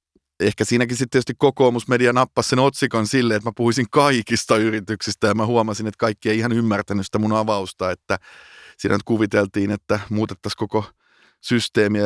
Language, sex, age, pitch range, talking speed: Finnish, male, 30-49, 105-120 Hz, 165 wpm